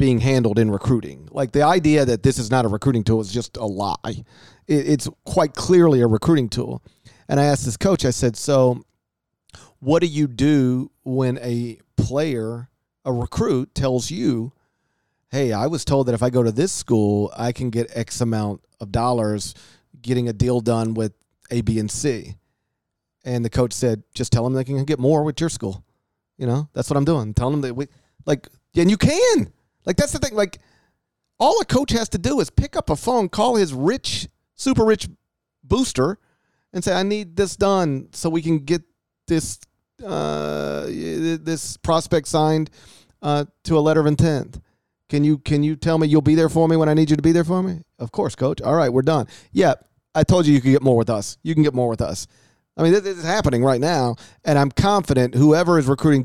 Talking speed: 210 wpm